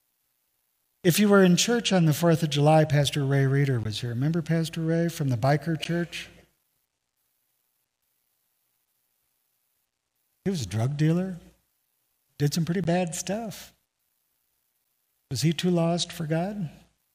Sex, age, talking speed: male, 50-69, 135 wpm